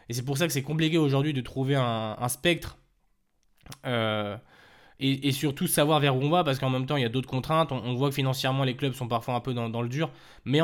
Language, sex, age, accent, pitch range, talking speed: French, male, 20-39, French, 115-140 Hz, 265 wpm